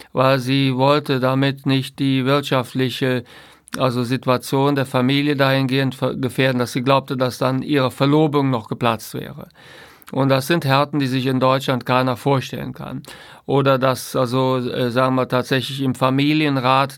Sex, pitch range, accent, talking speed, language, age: male, 125-140 Hz, German, 150 wpm, German, 50-69